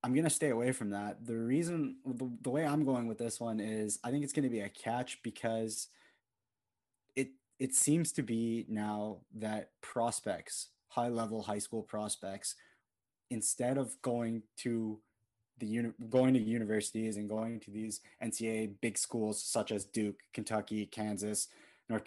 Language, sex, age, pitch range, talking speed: English, male, 20-39, 105-125 Hz, 170 wpm